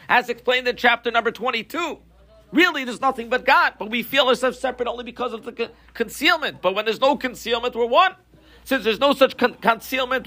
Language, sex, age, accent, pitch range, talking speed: English, male, 50-69, American, 230-280 Hz, 205 wpm